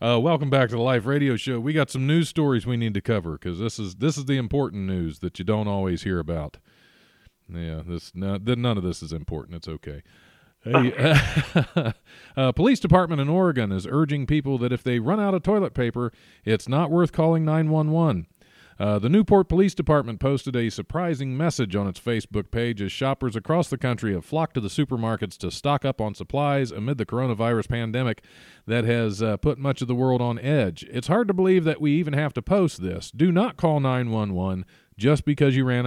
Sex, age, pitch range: male, 40-59, 105-145 Hz